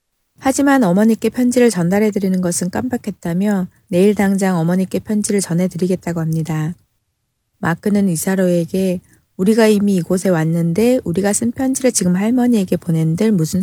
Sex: female